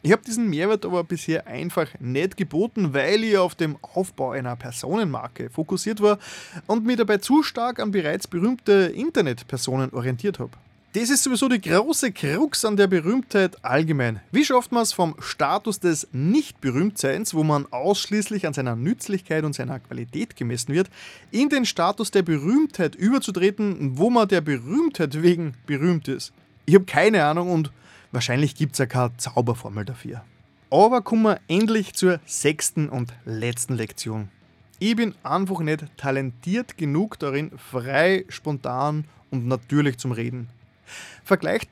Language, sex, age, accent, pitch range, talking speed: German, male, 20-39, German, 135-210 Hz, 155 wpm